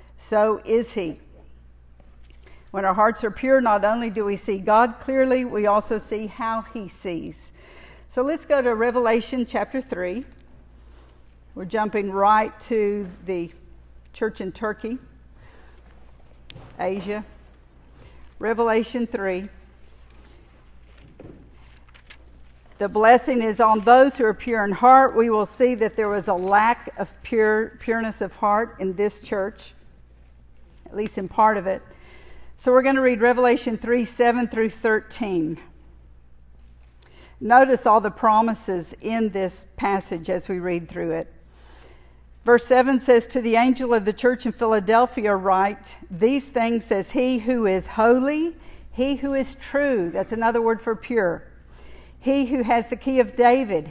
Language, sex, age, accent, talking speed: English, female, 50-69, American, 140 wpm